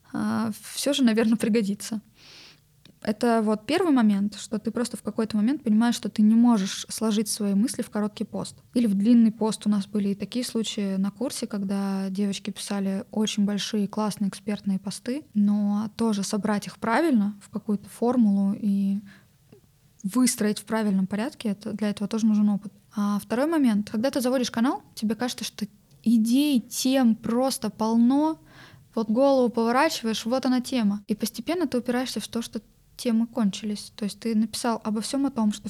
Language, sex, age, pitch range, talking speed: Russian, female, 20-39, 210-245 Hz, 170 wpm